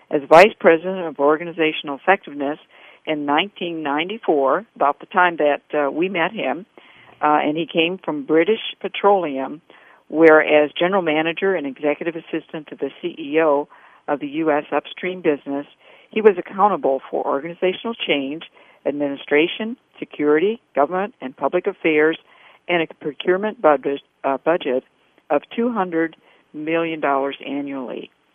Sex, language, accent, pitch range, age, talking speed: female, English, American, 145-185 Hz, 60-79, 125 wpm